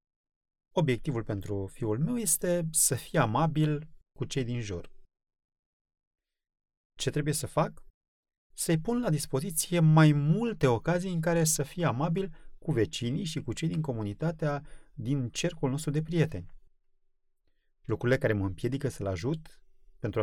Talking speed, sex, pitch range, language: 140 wpm, male, 110-160 Hz, Romanian